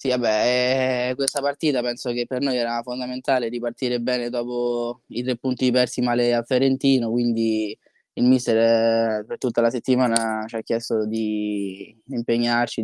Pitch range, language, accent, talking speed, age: 115-125 Hz, Italian, native, 155 wpm, 10-29